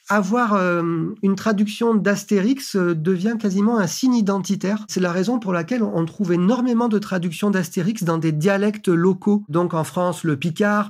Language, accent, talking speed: French, French, 165 wpm